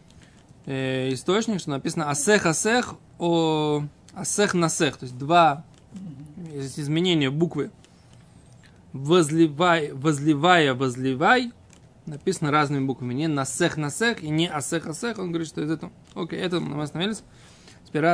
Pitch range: 140-180 Hz